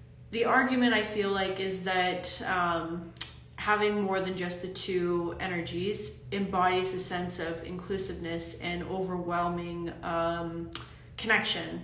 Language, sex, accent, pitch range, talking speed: English, female, American, 175-205 Hz, 120 wpm